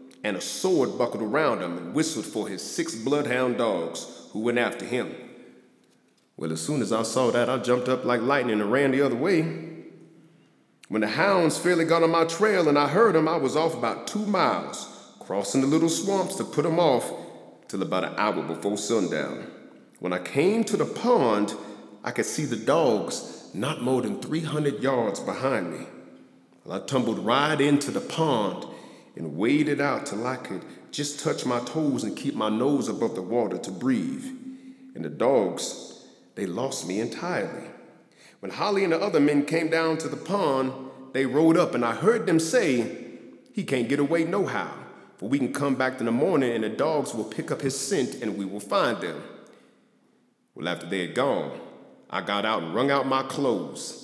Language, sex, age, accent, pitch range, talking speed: English, male, 40-59, American, 125-165 Hz, 195 wpm